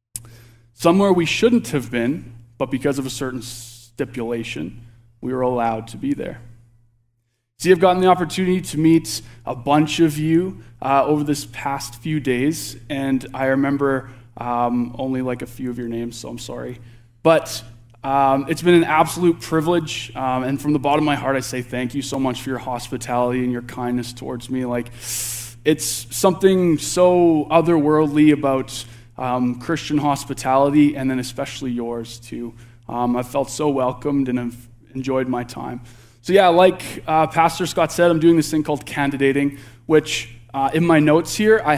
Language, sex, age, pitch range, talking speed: English, male, 20-39, 120-155 Hz, 175 wpm